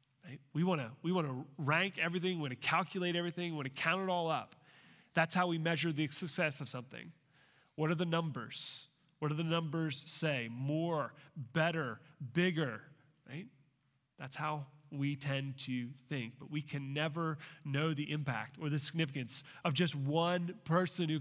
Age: 30-49